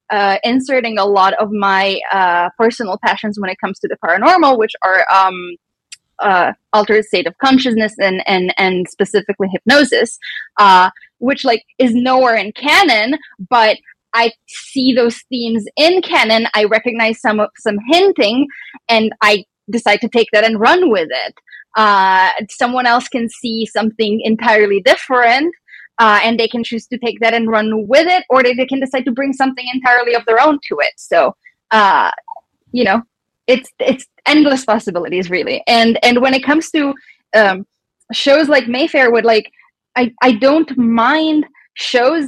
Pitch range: 215-265 Hz